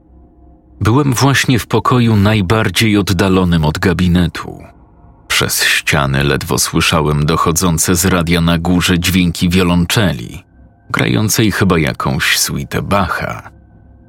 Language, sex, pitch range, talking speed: Polish, male, 85-105 Hz, 100 wpm